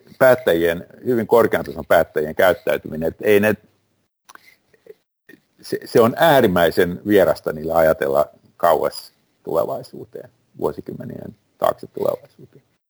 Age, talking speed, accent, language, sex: 50-69, 95 wpm, native, Finnish, male